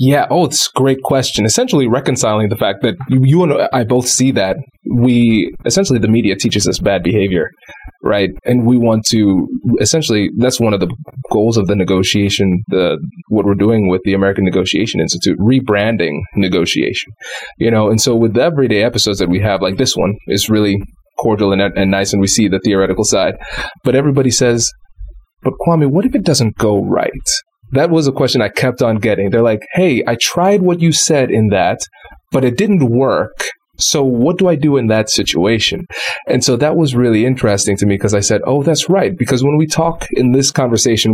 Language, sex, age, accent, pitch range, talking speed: English, male, 20-39, American, 105-135 Hz, 205 wpm